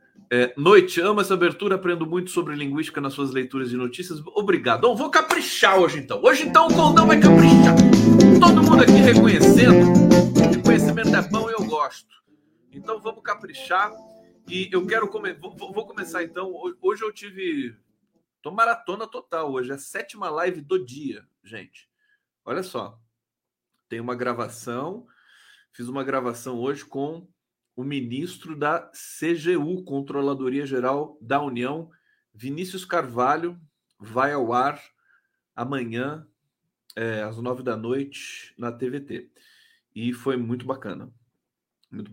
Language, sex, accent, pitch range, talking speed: Portuguese, male, Brazilian, 125-185 Hz, 135 wpm